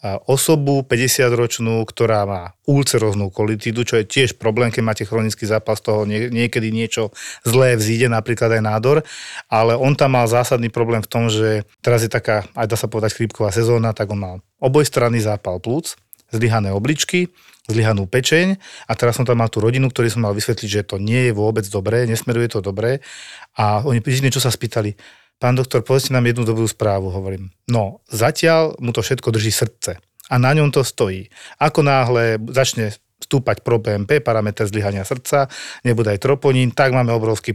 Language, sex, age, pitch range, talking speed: Slovak, male, 40-59, 110-130 Hz, 180 wpm